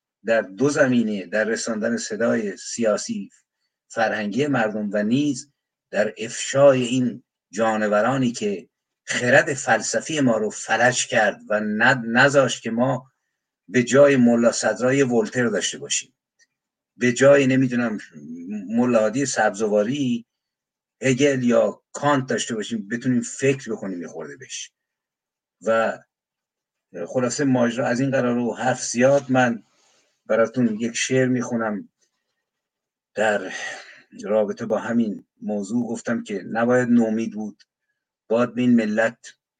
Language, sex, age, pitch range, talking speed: Persian, male, 50-69, 115-135 Hz, 115 wpm